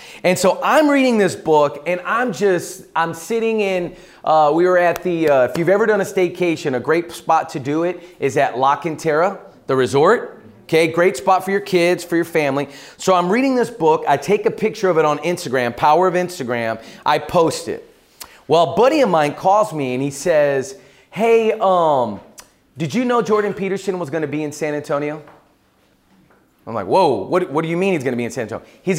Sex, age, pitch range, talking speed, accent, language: male, 30-49, 150-195 Hz, 210 wpm, American, English